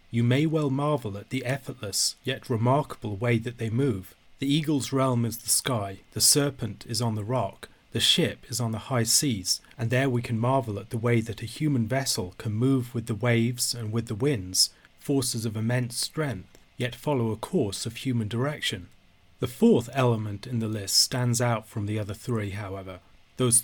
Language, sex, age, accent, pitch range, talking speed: English, male, 30-49, British, 110-130 Hz, 200 wpm